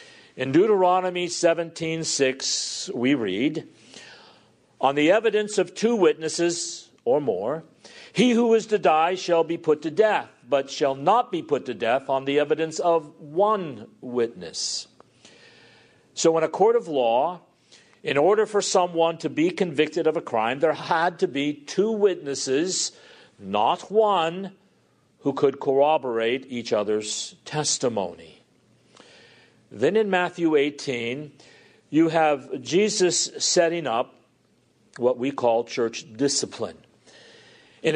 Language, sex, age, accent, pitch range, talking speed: English, male, 50-69, American, 140-190 Hz, 130 wpm